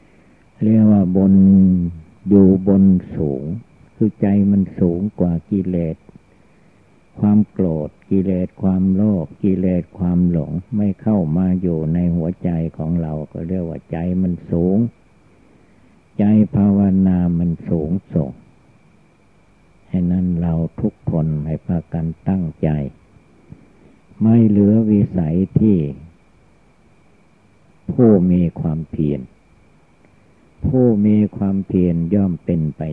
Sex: male